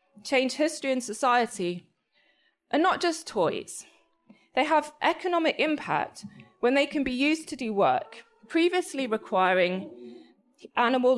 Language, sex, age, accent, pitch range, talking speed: English, female, 20-39, British, 225-320 Hz, 125 wpm